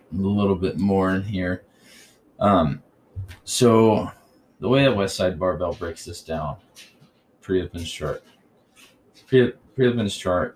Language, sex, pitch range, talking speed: English, male, 85-100 Hz, 125 wpm